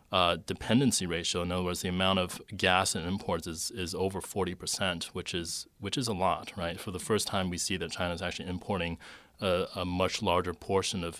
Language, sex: English, male